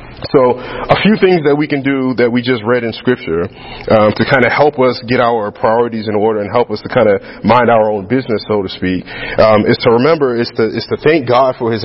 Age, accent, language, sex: 30-49, American, English, male